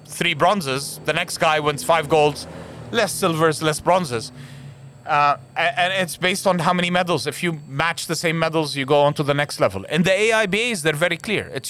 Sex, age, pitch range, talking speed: male, 30-49, 140-180 Hz, 205 wpm